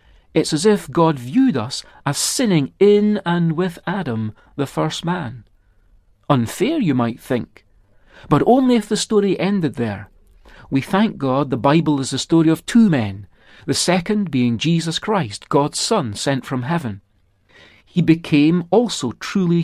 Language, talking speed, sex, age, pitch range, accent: English, 155 wpm, male, 40-59, 125-180 Hz, British